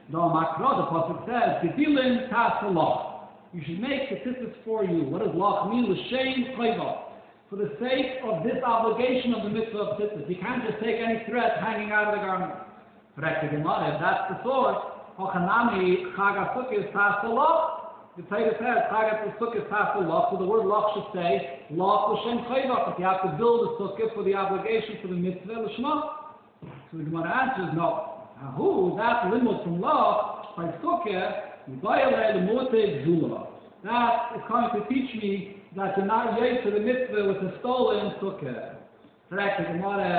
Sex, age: male, 60-79